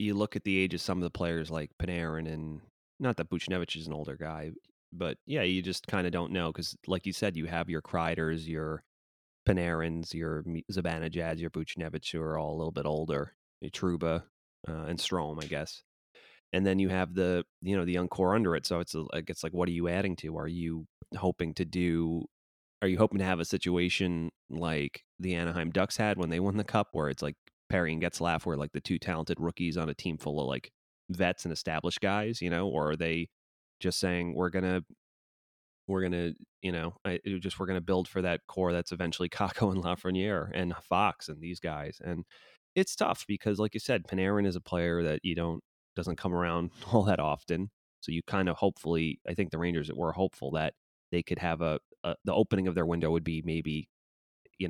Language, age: English, 30-49